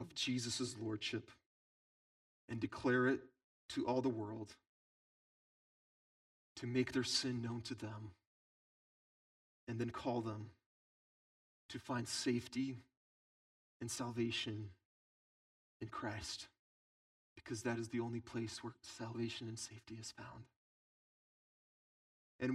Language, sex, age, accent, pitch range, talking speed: English, male, 30-49, American, 110-130 Hz, 110 wpm